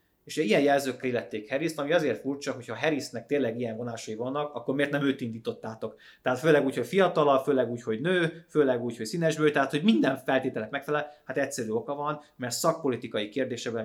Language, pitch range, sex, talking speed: Hungarian, 110-135 Hz, male, 190 wpm